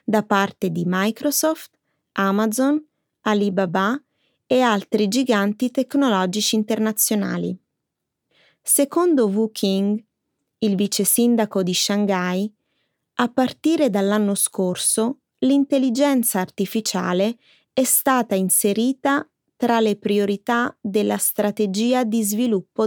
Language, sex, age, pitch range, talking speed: Italian, female, 20-39, 195-245 Hz, 90 wpm